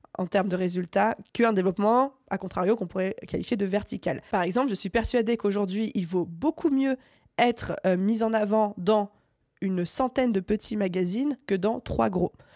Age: 20-39